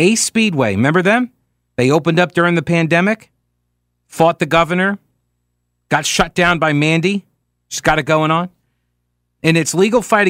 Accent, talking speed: American, 155 wpm